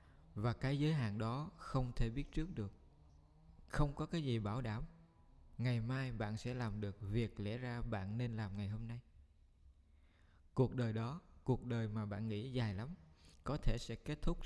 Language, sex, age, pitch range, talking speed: Vietnamese, male, 20-39, 80-125 Hz, 190 wpm